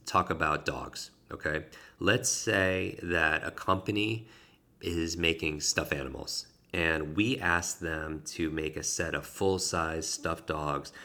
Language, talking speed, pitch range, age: English, 135 wpm, 80-95 Hz, 30-49